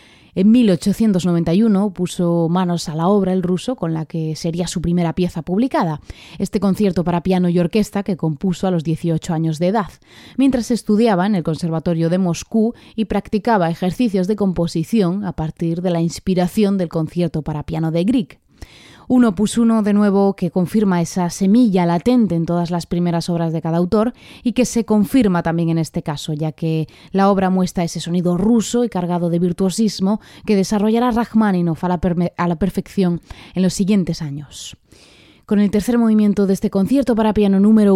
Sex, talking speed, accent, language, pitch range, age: female, 180 wpm, Spanish, Spanish, 170-205 Hz, 20-39